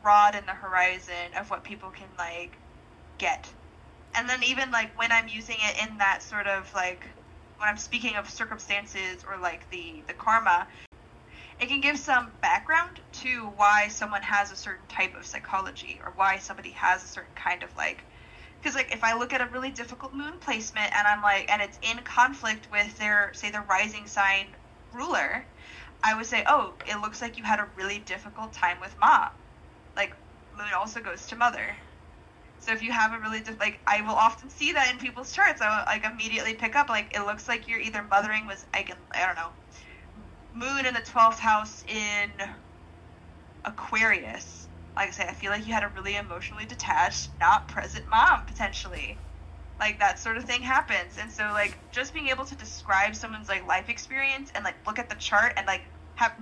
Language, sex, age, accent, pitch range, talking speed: English, female, 10-29, American, 200-235 Hz, 195 wpm